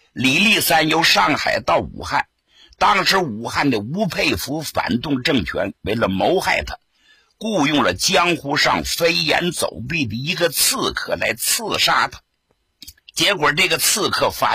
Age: 60-79